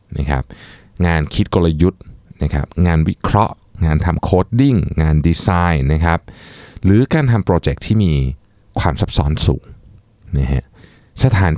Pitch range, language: 80-105 Hz, Thai